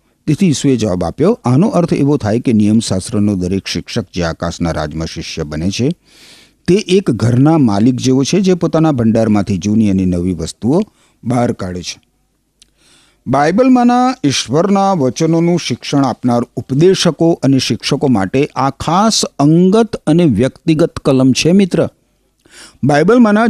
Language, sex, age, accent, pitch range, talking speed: Gujarati, male, 50-69, native, 100-165 Hz, 135 wpm